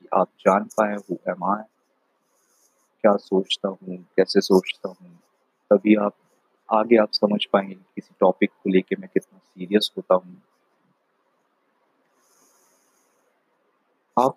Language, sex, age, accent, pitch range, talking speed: Hindi, male, 30-49, native, 95-145 Hz, 115 wpm